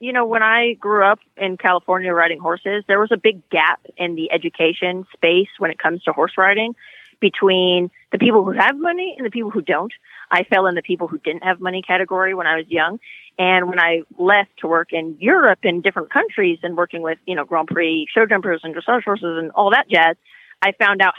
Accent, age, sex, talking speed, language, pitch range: American, 30-49, female, 225 wpm, English, 175-210 Hz